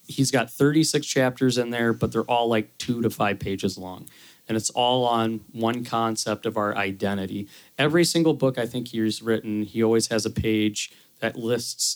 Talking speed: 190 wpm